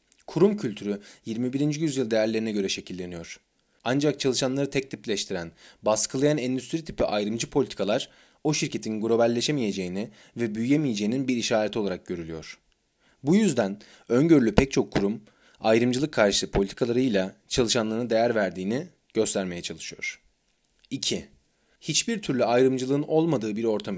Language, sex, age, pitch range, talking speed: Turkish, male, 30-49, 105-140 Hz, 115 wpm